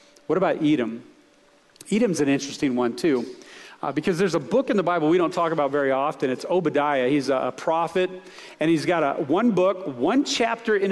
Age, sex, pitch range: 40-59, male, 130-175 Hz